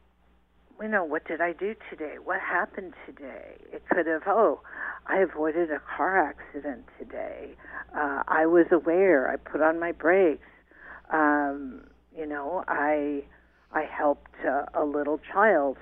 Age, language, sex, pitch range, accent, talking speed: 50-69, English, female, 150-180 Hz, American, 150 wpm